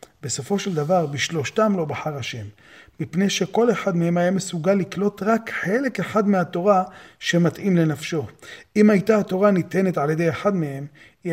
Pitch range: 150-185 Hz